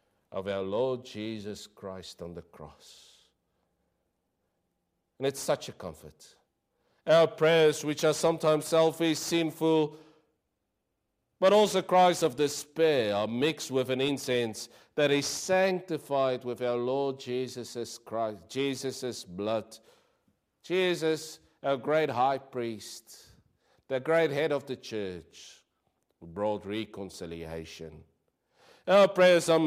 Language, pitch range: English, 110-155 Hz